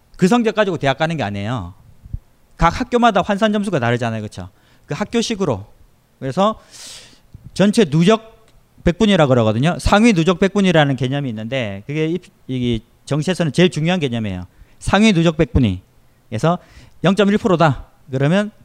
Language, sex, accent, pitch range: Korean, male, native, 120-185 Hz